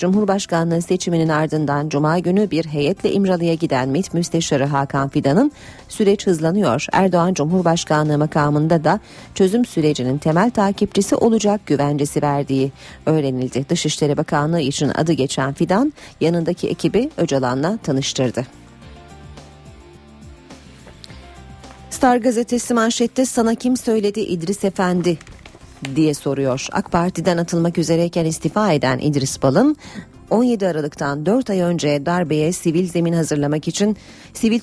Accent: native